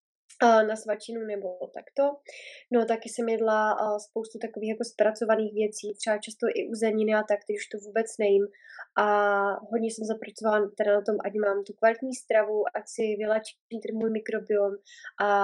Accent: native